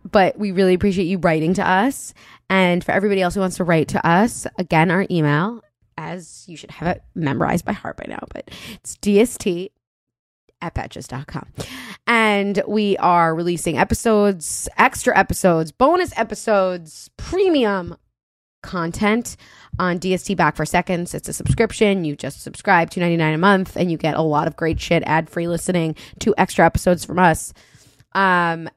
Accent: American